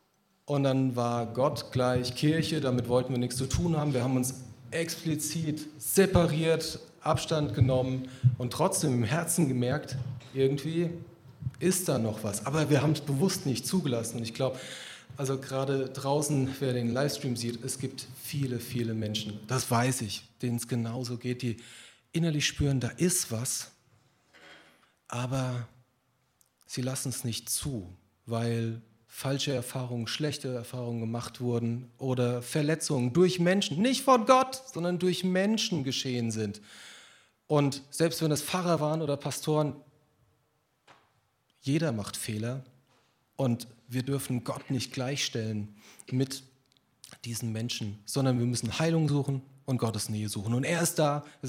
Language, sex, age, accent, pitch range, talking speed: German, male, 40-59, German, 120-150 Hz, 145 wpm